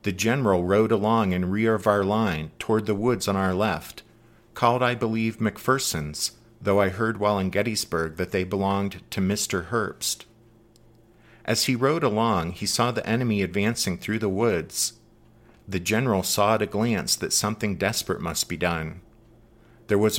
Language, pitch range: English, 100-115 Hz